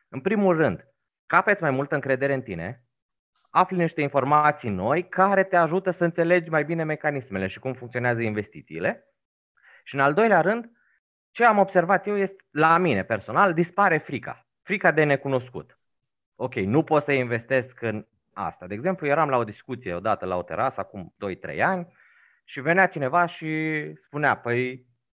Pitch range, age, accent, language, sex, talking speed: 125-185 Hz, 30-49, native, Romanian, male, 165 wpm